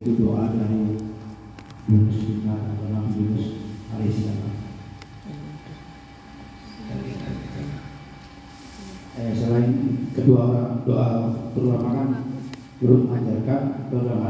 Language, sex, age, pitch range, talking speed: Indonesian, male, 50-69, 115-135 Hz, 40 wpm